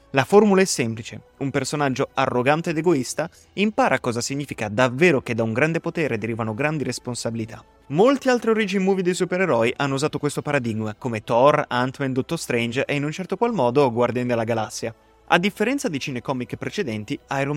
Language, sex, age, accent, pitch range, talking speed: Italian, male, 20-39, native, 120-150 Hz, 175 wpm